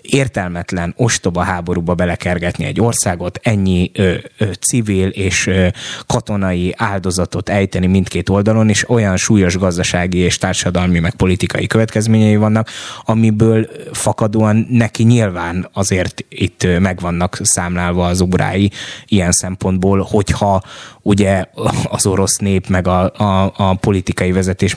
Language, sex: Hungarian, male